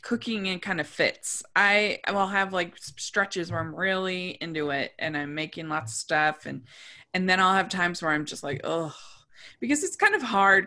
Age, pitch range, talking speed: 20-39, 145-185 Hz, 210 wpm